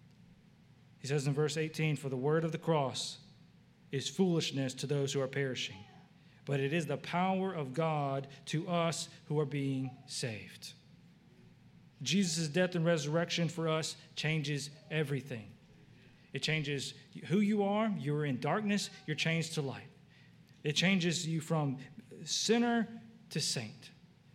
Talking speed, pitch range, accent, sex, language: 145 wpm, 140-175 Hz, American, male, English